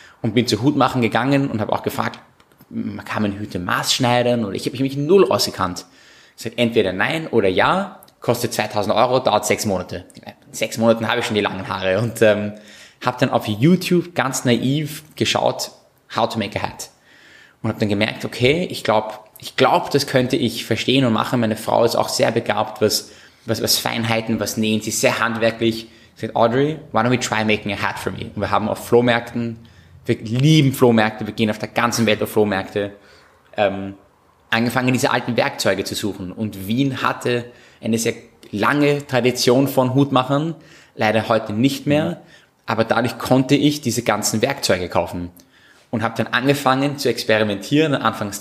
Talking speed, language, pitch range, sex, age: 185 wpm, German, 110-130 Hz, male, 20-39